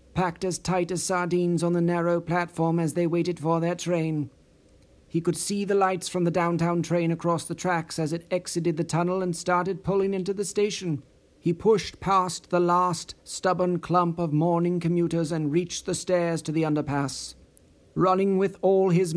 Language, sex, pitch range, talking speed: English, male, 160-185 Hz, 185 wpm